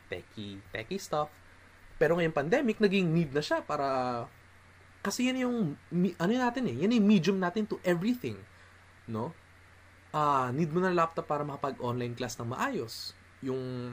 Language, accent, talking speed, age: Filipino, native, 140 wpm, 20-39